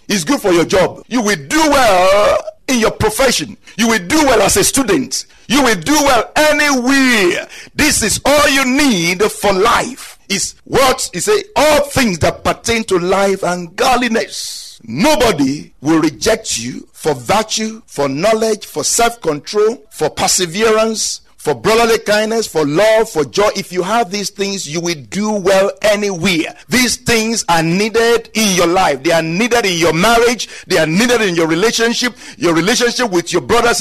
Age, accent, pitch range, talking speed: 50-69, Nigerian, 155-230 Hz, 170 wpm